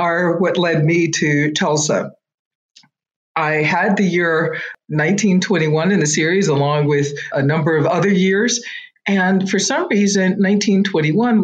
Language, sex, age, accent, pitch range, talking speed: English, female, 50-69, American, 150-200 Hz, 135 wpm